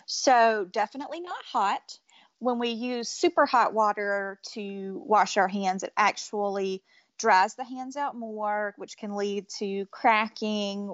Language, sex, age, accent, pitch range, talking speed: English, female, 30-49, American, 195-245 Hz, 145 wpm